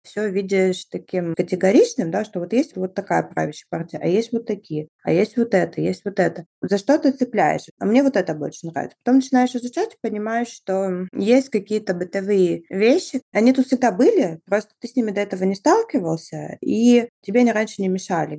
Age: 20-39